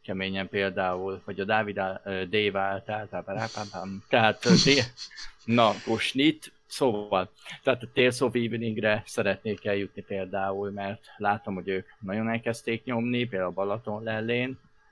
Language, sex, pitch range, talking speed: Hungarian, male, 95-110 Hz, 115 wpm